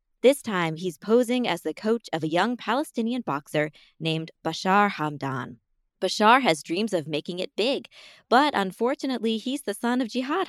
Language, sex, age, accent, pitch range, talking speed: English, female, 20-39, American, 165-235 Hz, 165 wpm